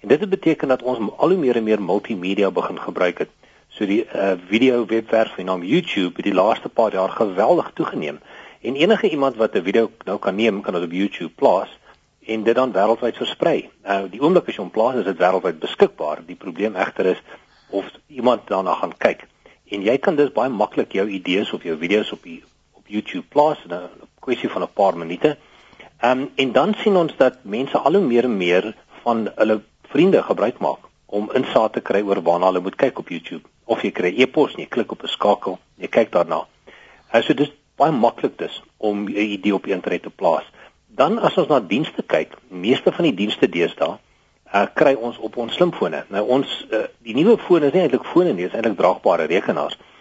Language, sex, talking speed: Malay, male, 215 wpm